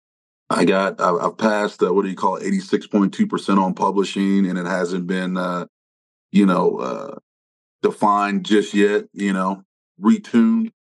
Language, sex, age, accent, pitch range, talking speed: English, male, 30-49, American, 95-105 Hz, 170 wpm